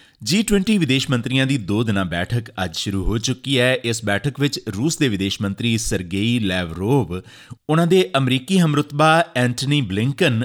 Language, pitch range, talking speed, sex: Punjabi, 105-145 Hz, 155 wpm, male